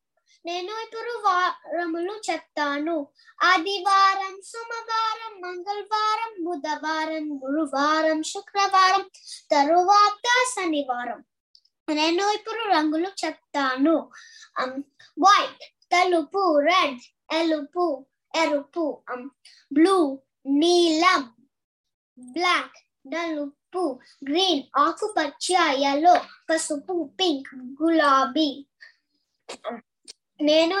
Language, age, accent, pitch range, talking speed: Telugu, 20-39, native, 295-370 Hz, 35 wpm